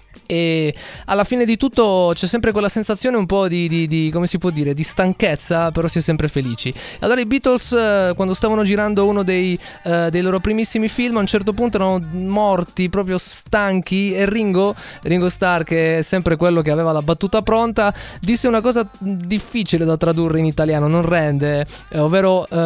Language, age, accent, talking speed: Italian, 20-39, native, 185 wpm